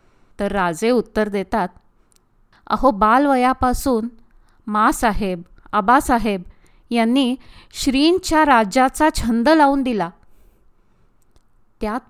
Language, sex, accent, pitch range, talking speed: Marathi, female, native, 205-265 Hz, 75 wpm